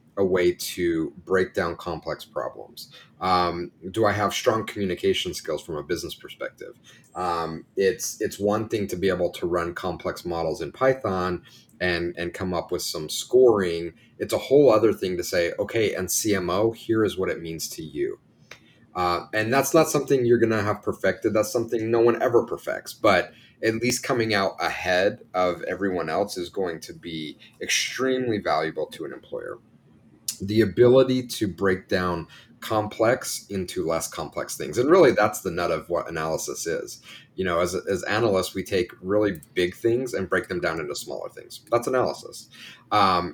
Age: 30-49